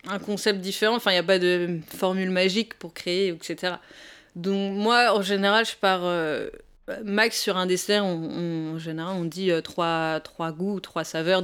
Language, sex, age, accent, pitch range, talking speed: French, female, 20-39, French, 175-210 Hz, 195 wpm